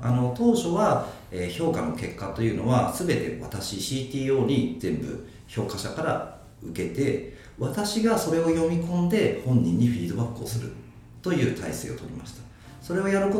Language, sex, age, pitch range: Japanese, male, 40-59, 95-145 Hz